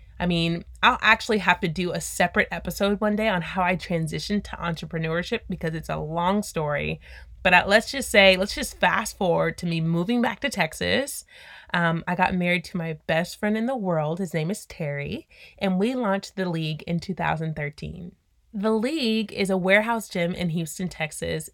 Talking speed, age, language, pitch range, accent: 190 wpm, 30-49, English, 170-205 Hz, American